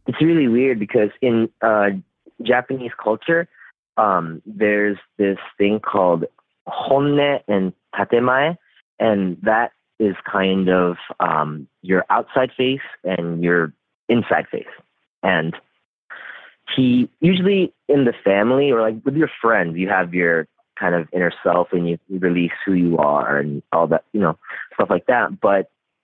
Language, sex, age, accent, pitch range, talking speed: English, male, 30-49, American, 85-115 Hz, 145 wpm